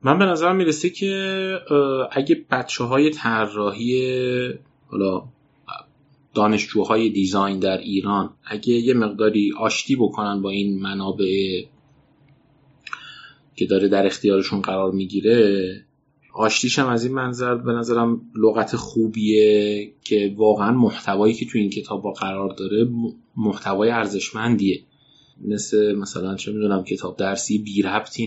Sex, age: male, 30-49